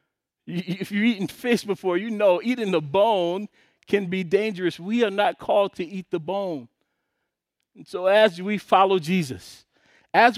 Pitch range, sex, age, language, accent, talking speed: 165-200 Hz, male, 40-59, English, American, 170 wpm